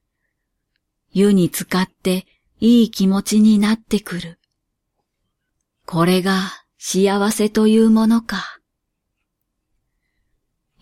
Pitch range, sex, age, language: 190-225 Hz, female, 40-59, Japanese